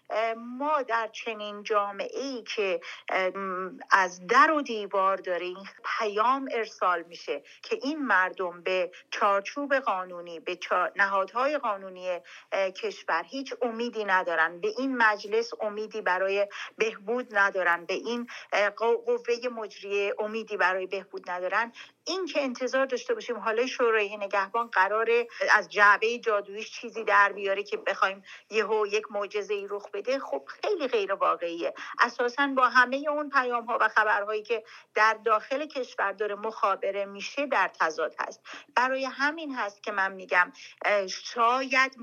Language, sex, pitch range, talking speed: Persian, female, 200-250 Hz, 135 wpm